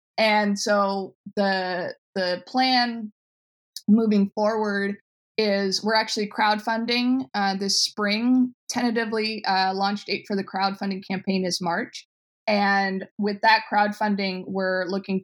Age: 20-39